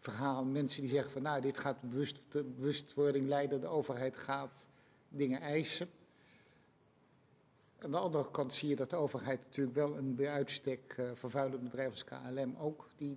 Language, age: Dutch, 60-79